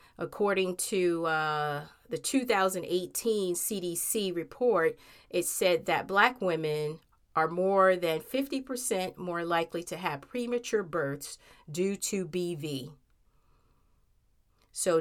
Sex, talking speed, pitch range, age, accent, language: female, 105 wpm, 150-185 Hz, 30-49, American, English